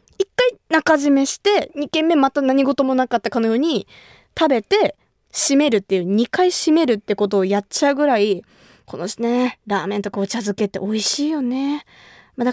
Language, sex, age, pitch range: Japanese, female, 20-39, 215-320 Hz